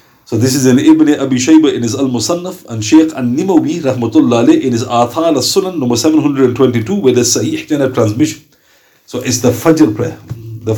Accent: Indian